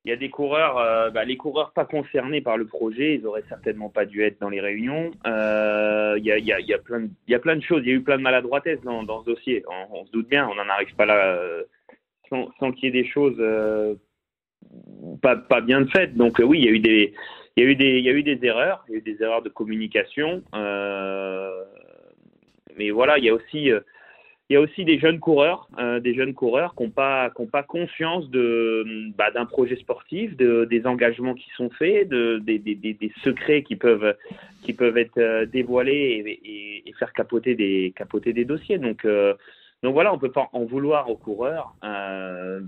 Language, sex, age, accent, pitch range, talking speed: French, male, 30-49, French, 105-140 Hz, 205 wpm